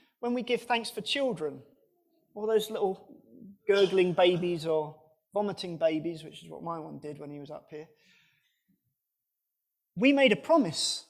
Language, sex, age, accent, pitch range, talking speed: English, male, 30-49, British, 165-240 Hz, 155 wpm